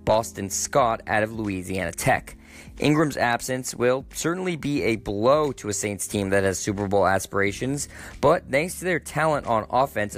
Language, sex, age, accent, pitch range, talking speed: English, male, 20-39, American, 100-125 Hz, 170 wpm